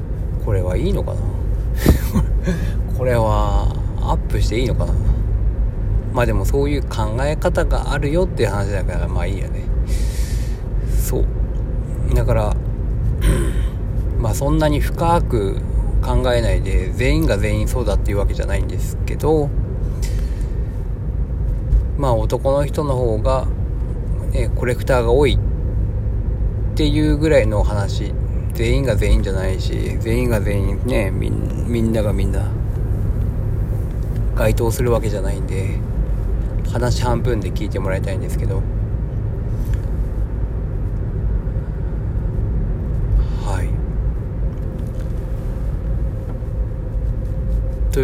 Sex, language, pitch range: male, Japanese, 100-115 Hz